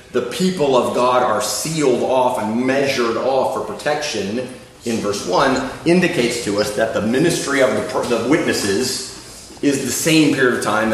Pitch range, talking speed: 120-155 Hz, 165 wpm